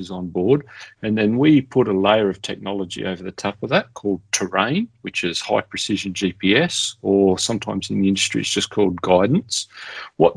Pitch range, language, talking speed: 95-115 Hz, English, 185 wpm